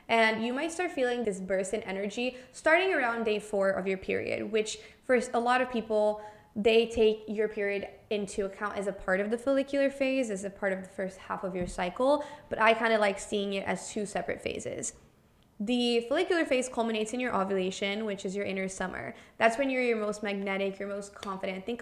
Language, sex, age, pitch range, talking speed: English, female, 20-39, 200-235 Hz, 215 wpm